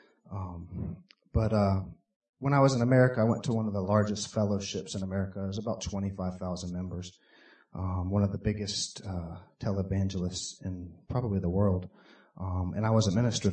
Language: English